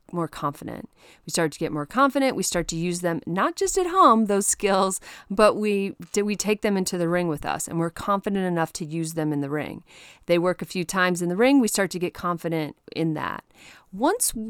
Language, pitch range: English, 170-210 Hz